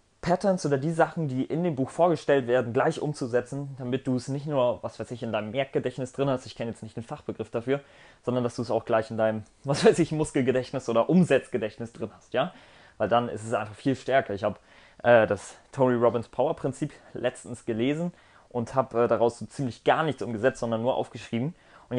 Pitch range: 115-145 Hz